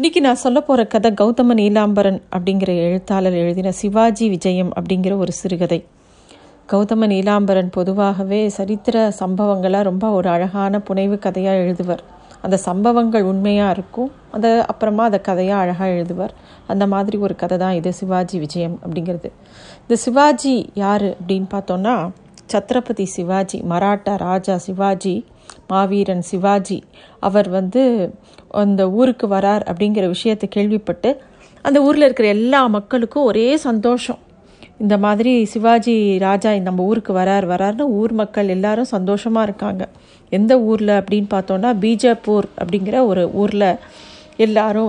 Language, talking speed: Tamil, 125 wpm